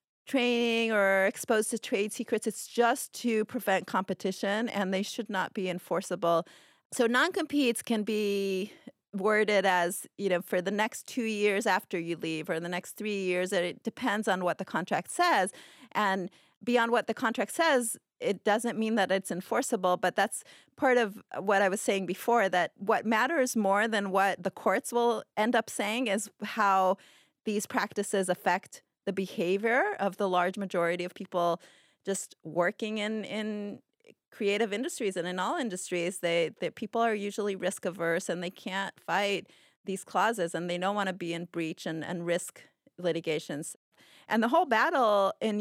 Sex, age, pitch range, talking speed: female, 30-49, 185-225 Hz, 170 wpm